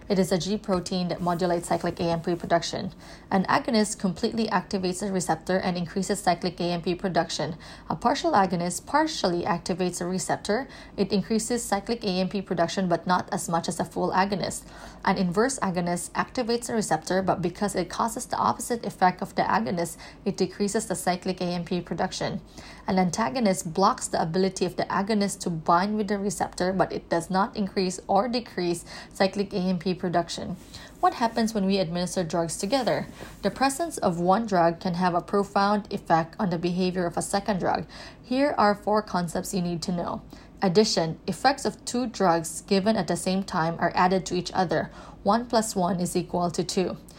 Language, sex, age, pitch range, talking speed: English, female, 20-39, 180-210 Hz, 180 wpm